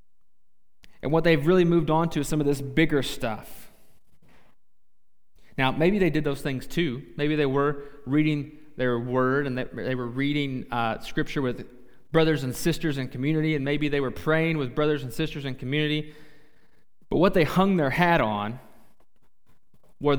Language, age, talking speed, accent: English, 20-39, 170 wpm, American